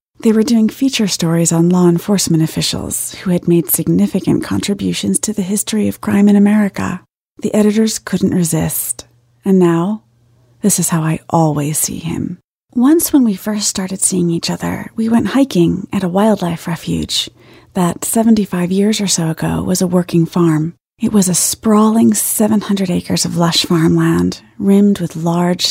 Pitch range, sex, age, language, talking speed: 170-210 Hz, female, 30-49, English, 165 wpm